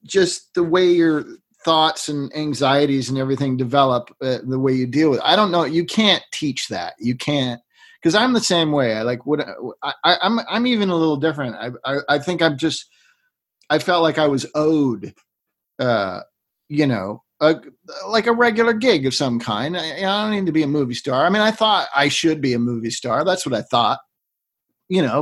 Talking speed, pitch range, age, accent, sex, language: 210 wpm, 125-170 Hz, 40-59, American, male, English